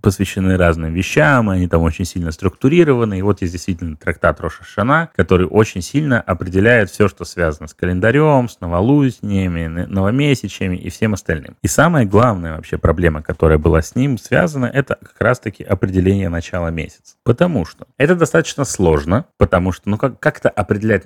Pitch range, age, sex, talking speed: 85-105 Hz, 30-49, male, 160 wpm